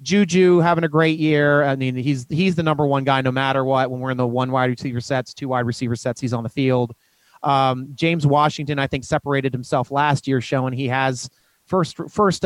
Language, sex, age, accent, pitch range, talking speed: English, male, 30-49, American, 135-185 Hz, 220 wpm